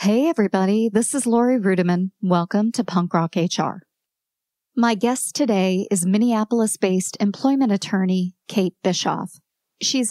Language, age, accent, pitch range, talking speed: English, 40-59, American, 185-240 Hz, 125 wpm